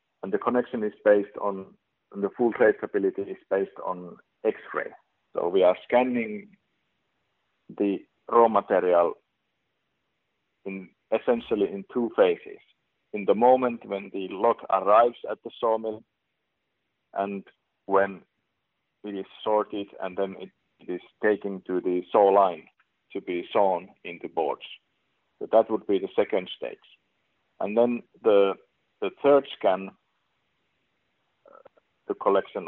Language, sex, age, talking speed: English, male, 50-69, 130 wpm